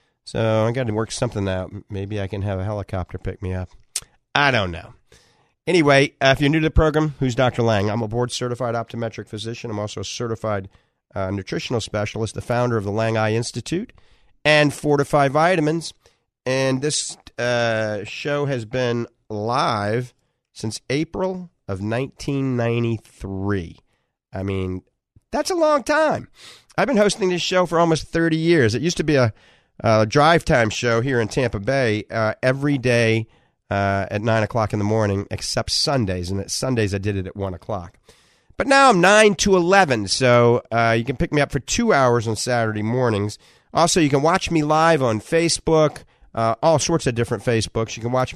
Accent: American